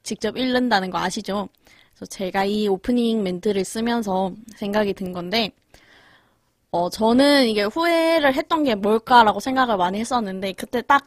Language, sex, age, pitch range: Korean, female, 20-39, 195-250 Hz